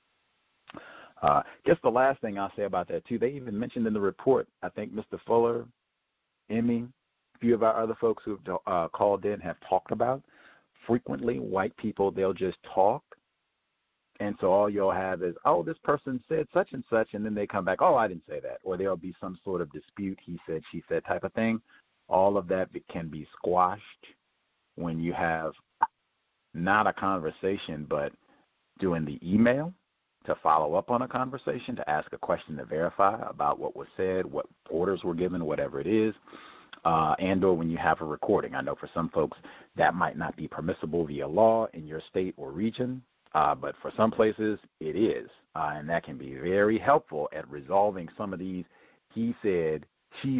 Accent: American